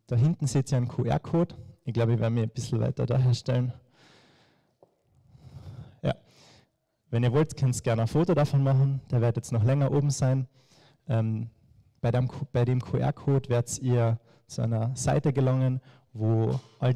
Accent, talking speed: German, 165 wpm